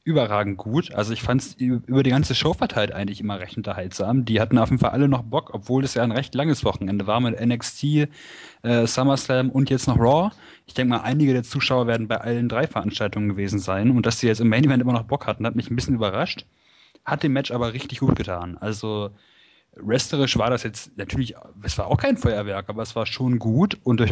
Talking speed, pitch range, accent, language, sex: 230 wpm, 110-130 Hz, German, German, male